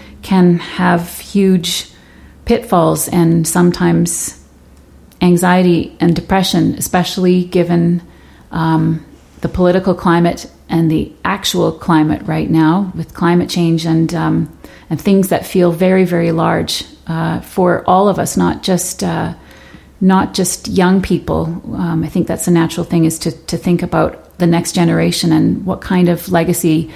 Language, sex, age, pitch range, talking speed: English, female, 30-49, 165-180 Hz, 145 wpm